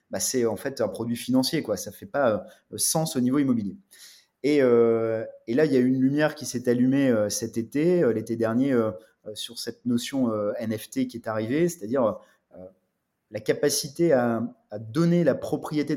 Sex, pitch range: male, 115-150 Hz